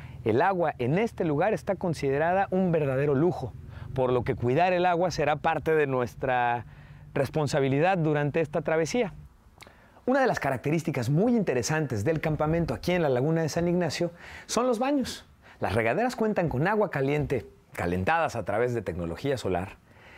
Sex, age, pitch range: male, 40-59, 130-185 Hz